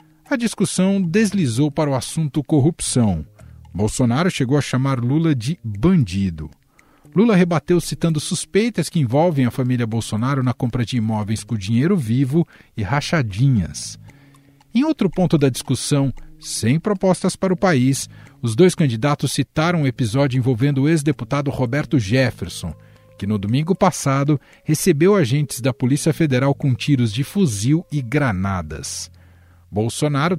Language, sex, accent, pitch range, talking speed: Portuguese, male, Brazilian, 120-155 Hz, 135 wpm